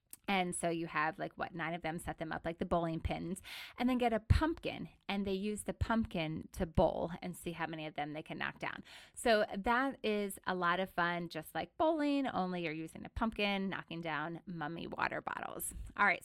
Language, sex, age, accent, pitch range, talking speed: English, female, 20-39, American, 175-225 Hz, 220 wpm